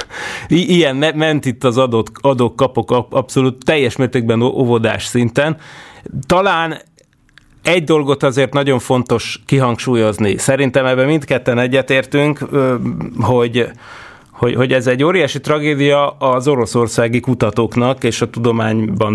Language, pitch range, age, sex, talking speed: Hungarian, 115-135 Hz, 30-49, male, 110 wpm